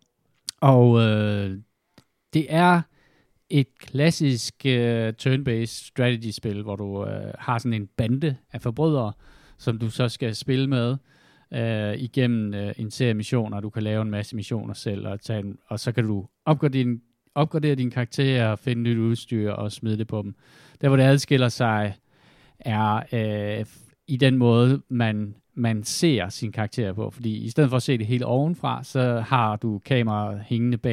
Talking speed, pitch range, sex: 165 wpm, 105-130 Hz, male